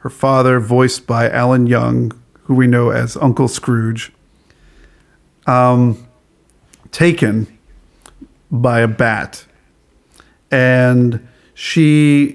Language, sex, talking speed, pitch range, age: English, male, 90 wpm, 115-135 Hz, 50-69